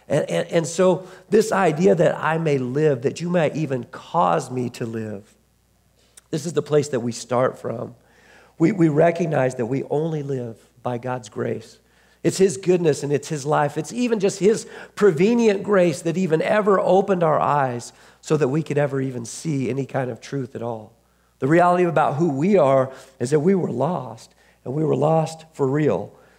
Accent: American